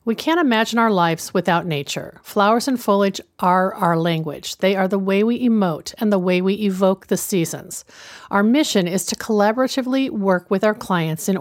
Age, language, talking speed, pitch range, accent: 50-69, English, 190 wpm, 185-230 Hz, American